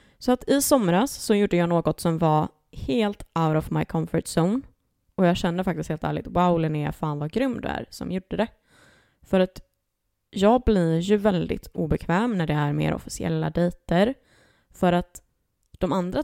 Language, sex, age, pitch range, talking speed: Swedish, female, 20-39, 160-210 Hz, 180 wpm